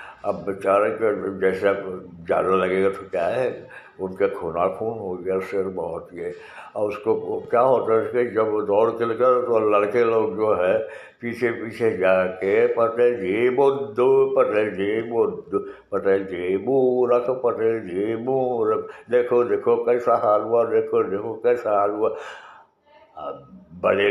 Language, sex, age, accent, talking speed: Hindi, male, 60-79, native, 150 wpm